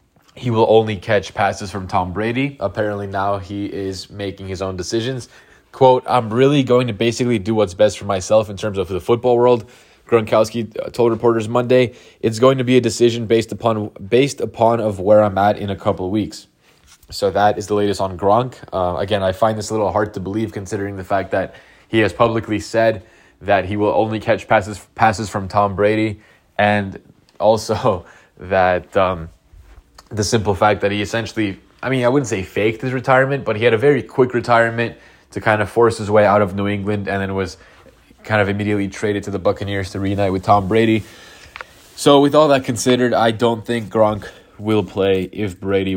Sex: male